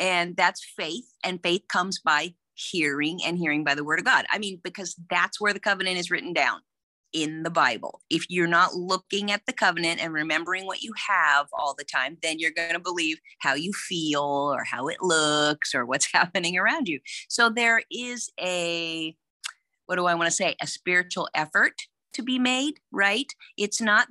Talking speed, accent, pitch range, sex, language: 195 wpm, American, 165-215 Hz, female, English